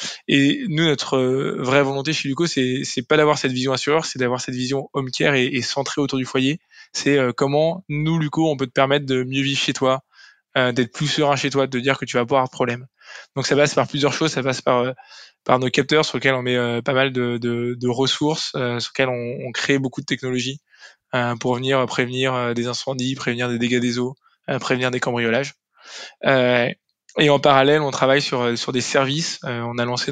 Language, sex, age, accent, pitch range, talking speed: French, male, 20-39, French, 125-140 Hz, 235 wpm